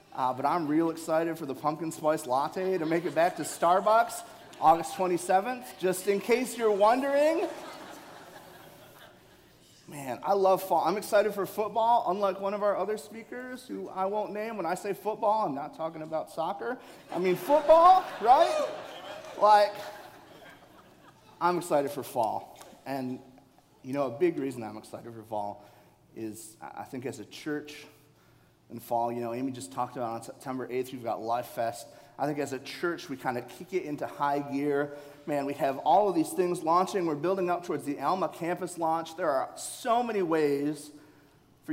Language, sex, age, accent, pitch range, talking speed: English, male, 30-49, American, 135-195 Hz, 180 wpm